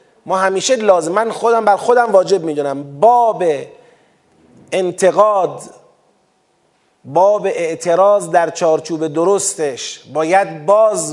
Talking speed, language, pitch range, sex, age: 95 wpm, Persian, 180-240 Hz, male, 30-49